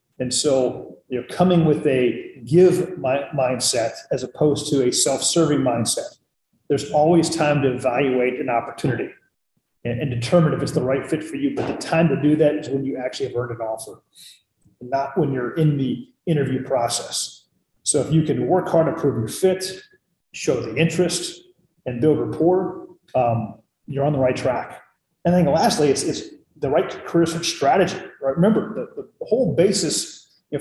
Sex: male